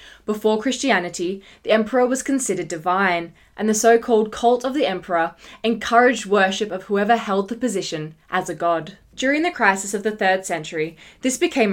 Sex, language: female, English